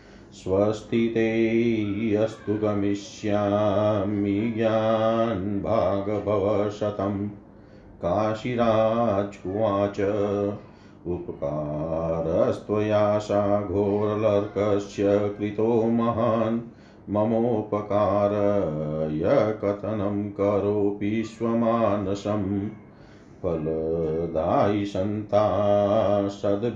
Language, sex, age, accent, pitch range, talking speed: Hindi, male, 40-59, native, 100-110 Hz, 35 wpm